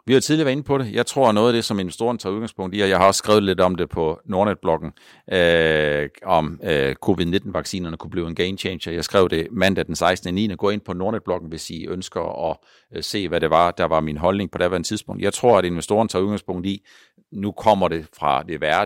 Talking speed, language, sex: 250 wpm, Danish, male